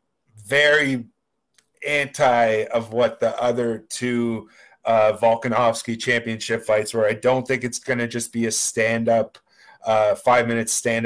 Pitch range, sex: 110-125 Hz, male